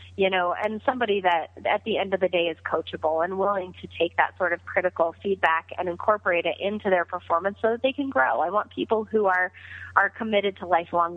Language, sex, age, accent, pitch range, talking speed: English, female, 30-49, American, 170-195 Hz, 225 wpm